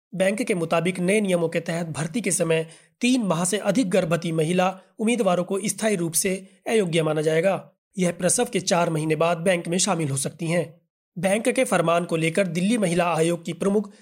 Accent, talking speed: native, 195 wpm